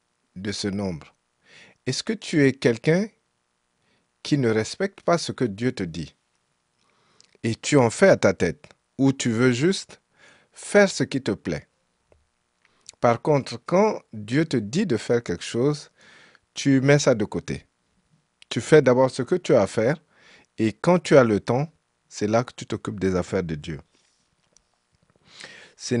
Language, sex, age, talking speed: French, male, 50-69, 170 wpm